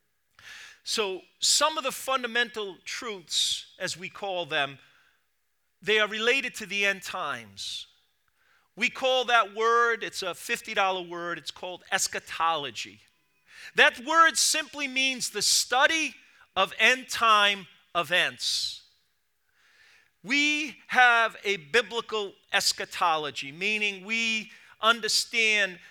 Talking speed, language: 105 wpm, English